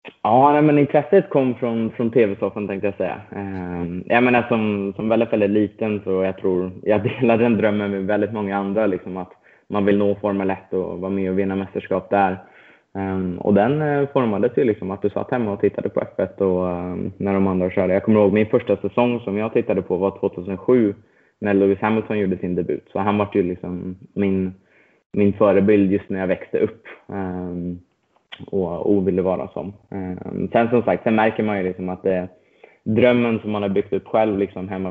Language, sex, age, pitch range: Swedish, male, 20-39, 95-110 Hz